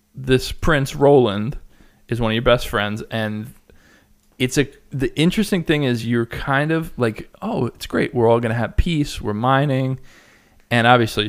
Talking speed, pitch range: 175 wpm, 110-140 Hz